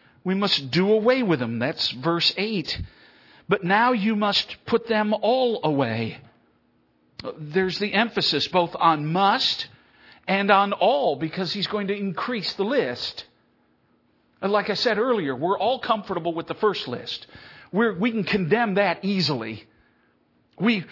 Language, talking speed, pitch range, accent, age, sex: English, 150 wpm, 125-195 Hz, American, 50-69, male